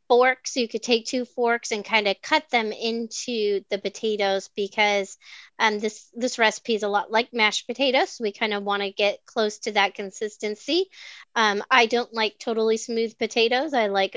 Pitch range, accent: 205-240 Hz, American